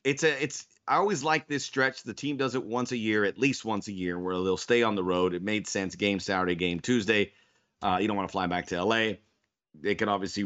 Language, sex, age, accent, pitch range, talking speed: English, male, 30-49, American, 100-130 Hz, 260 wpm